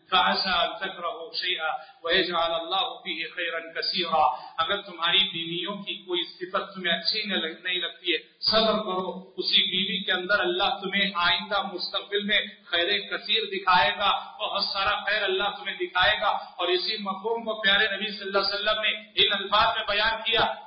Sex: male